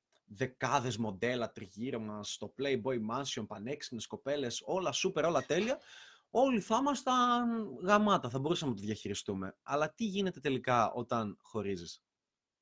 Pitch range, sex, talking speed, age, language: 115-170 Hz, male, 135 wpm, 20-39, Greek